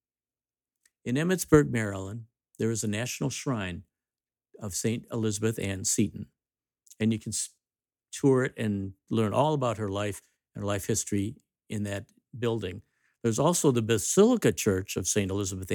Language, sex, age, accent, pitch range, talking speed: English, male, 50-69, American, 100-120 Hz, 150 wpm